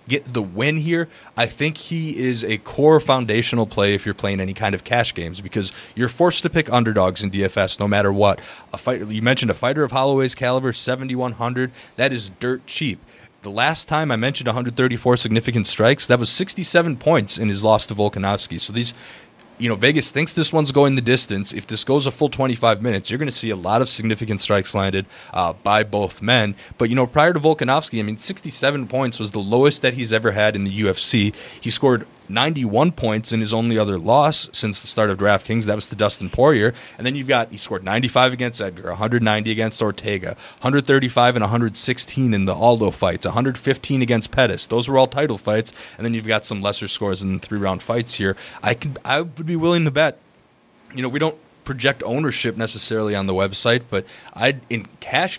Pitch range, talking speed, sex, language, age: 105-135 Hz, 210 wpm, male, English, 20-39